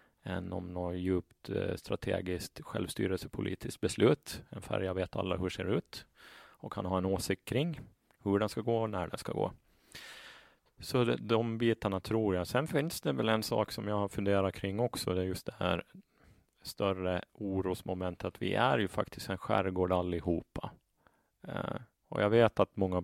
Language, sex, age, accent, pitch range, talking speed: Swedish, male, 30-49, Norwegian, 90-105 Hz, 175 wpm